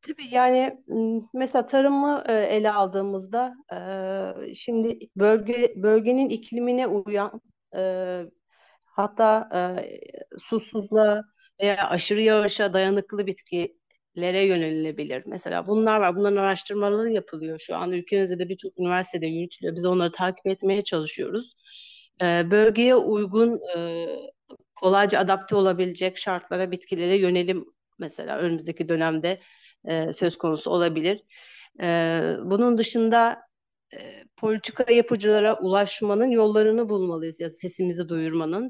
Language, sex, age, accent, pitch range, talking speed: Turkish, female, 40-59, native, 180-225 Hz, 100 wpm